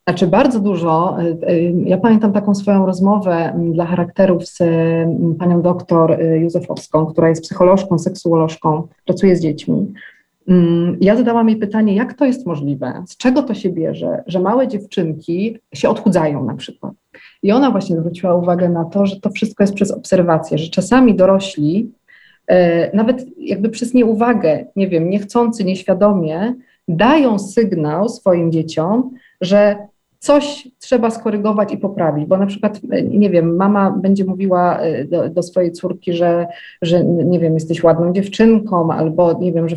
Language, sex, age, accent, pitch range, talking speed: Polish, female, 40-59, native, 170-210 Hz, 150 wpm